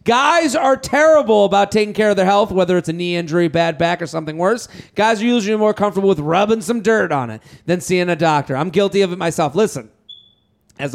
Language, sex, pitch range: English, male, 165-215 Hz